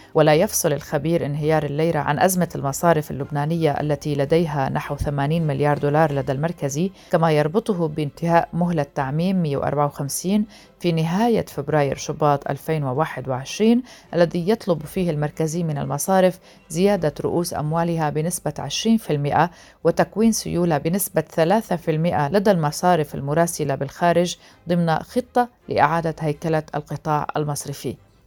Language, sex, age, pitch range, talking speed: Arabic, female, 40-59, 145-175 Hz, 110 wpm